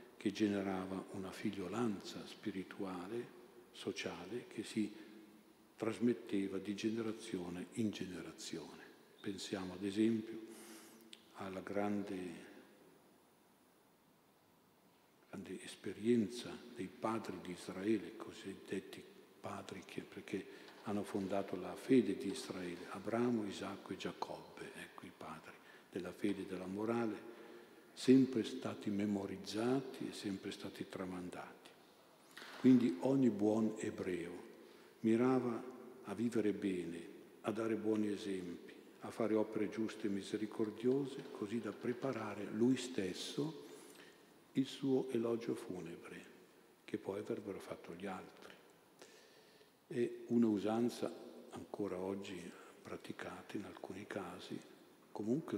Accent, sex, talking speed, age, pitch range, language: native, male, 105 wpm, 60-79, 100-115 Hz, Italian